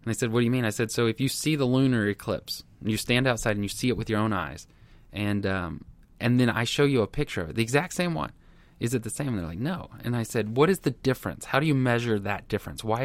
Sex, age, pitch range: male, 20-39, 100-130 Hz